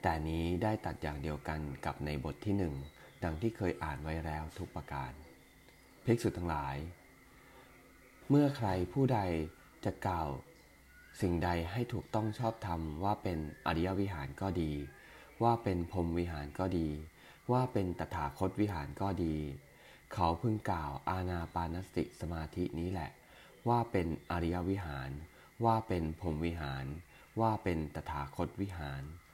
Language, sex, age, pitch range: English, male, 20-39, 80-100 Hz